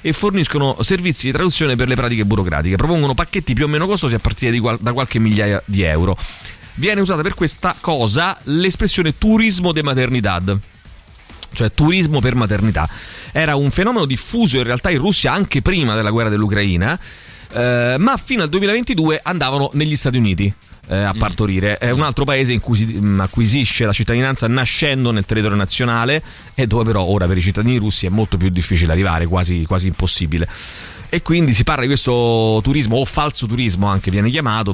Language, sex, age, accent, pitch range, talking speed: Italian, male, 30-49, native, 100-135 Hz, 180 wpm